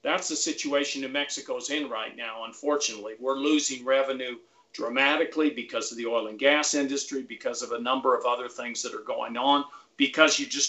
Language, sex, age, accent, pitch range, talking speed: English, male, 50-69, American, 125-155 Hz, 190 wpm